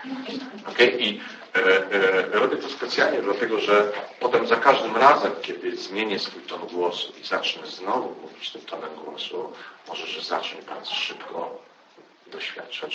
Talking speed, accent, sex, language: 145 wpm, native, male, Polish